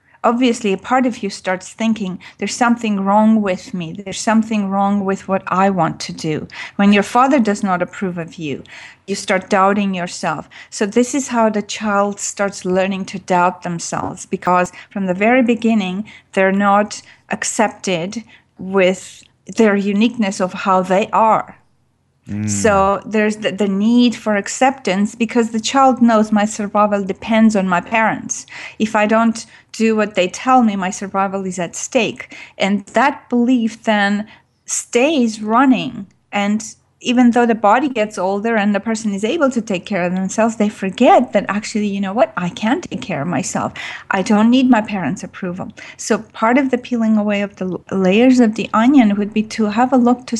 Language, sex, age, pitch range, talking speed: English, female, 40-59, 195-230 Hz, 180 wpm